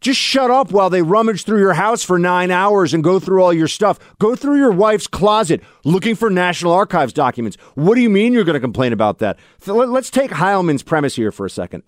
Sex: male